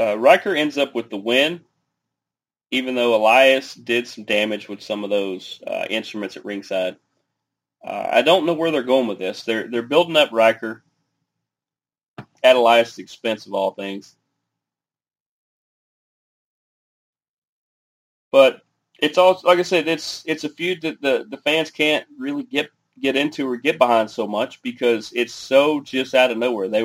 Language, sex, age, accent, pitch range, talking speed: English, male, 30-49, American, 110-135 Hz, 165 wpm